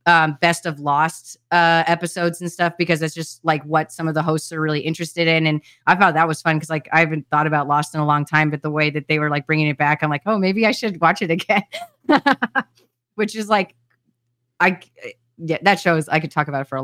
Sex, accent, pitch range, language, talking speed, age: female, American, 155-175 Hz, English, 255 wpm, 20-39